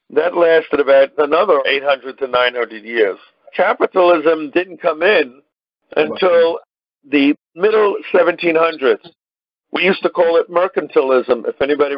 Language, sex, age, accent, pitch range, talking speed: English, male, 50-69, American, 145-210 Hz, 120 wpm